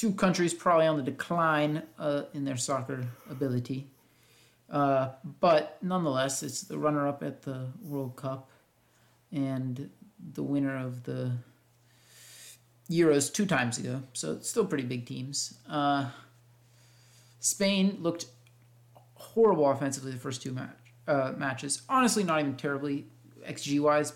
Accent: American